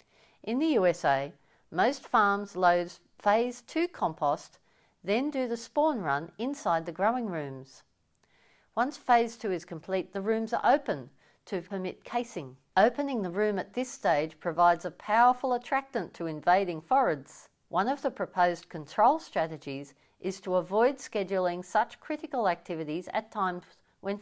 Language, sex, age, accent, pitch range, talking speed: English, female, 50-69, Australian, 175-250 Hz, 145 wpm